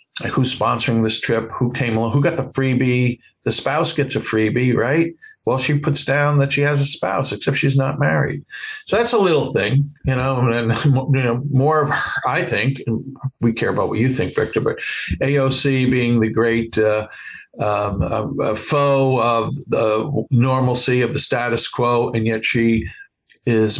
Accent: American